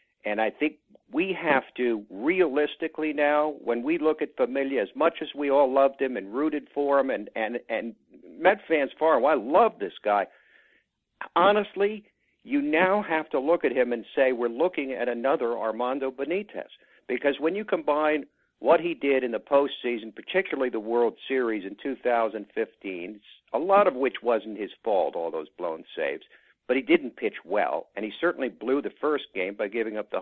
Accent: American